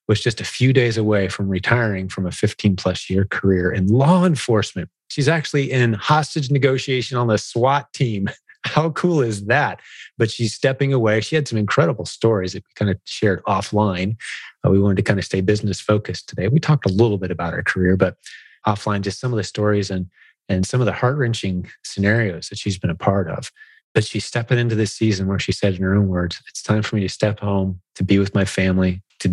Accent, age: American, 30-49